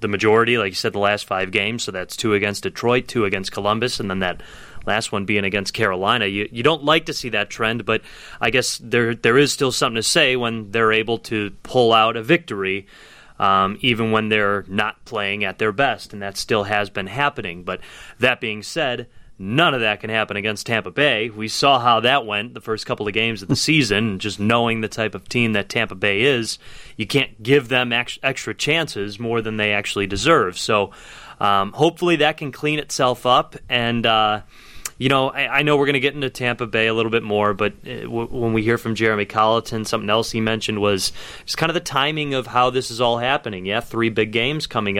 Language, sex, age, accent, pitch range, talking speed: English, male, 30-49, American, 105-130 Hz, 220 wpm